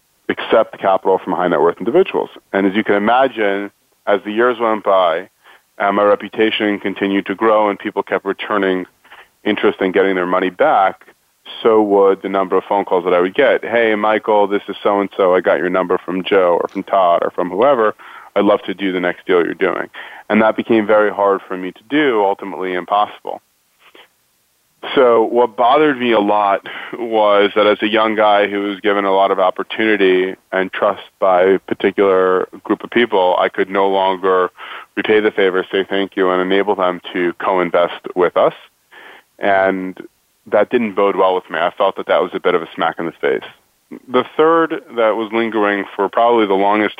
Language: English